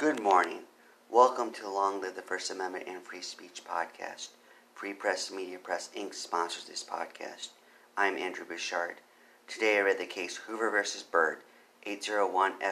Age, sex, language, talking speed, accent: 40-59, male, English, 160 wpm, American